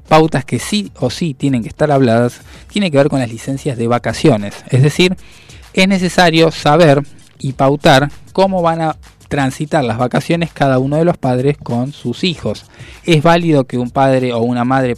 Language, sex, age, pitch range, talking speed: Spanish, male, 20-39, 120-155 Hz, 185 wpm